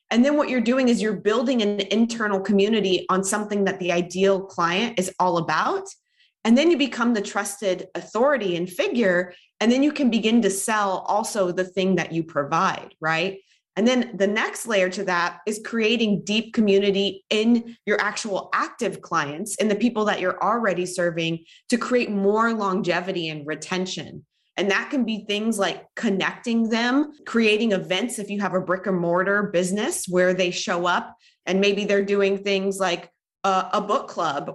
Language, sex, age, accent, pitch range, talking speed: English, female, 20-39, American, 185-225 Hz, 180 wpm